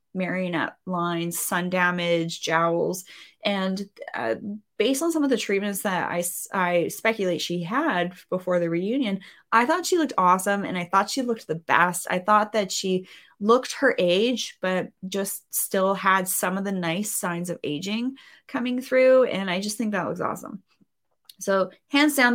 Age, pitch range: 20-39, 180-220 Hz